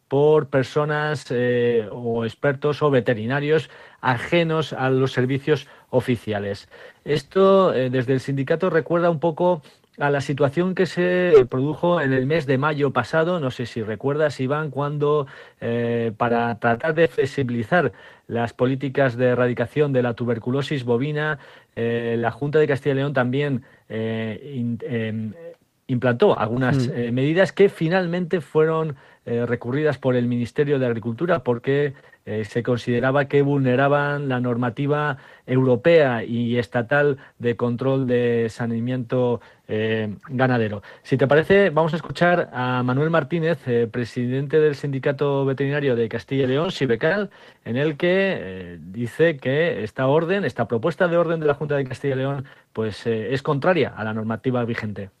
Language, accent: Spanish, Spanish